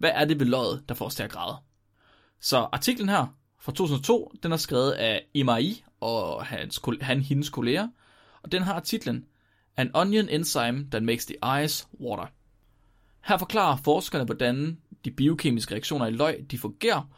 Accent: native